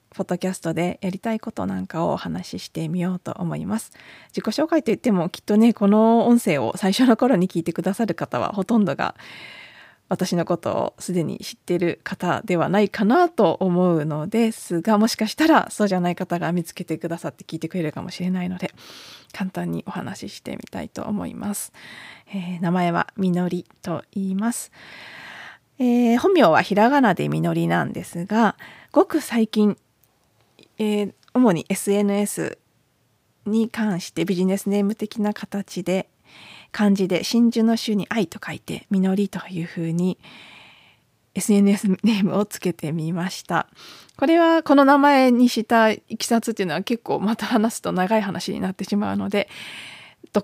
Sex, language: female, Japanese